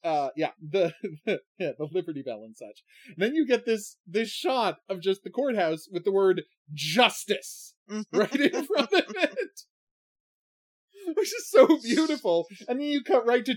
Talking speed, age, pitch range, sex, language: 175 wpm, 30-49, 165-225 Hz, male, English